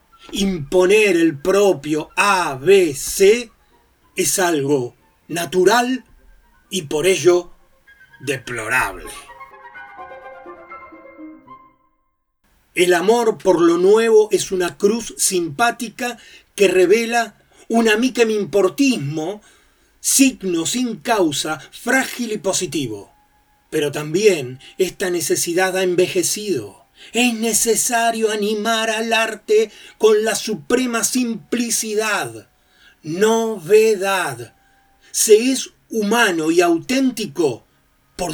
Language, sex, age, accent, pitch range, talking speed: Spanish, male, 30-49, Argentinian, 170-240 Hz, 80 wpm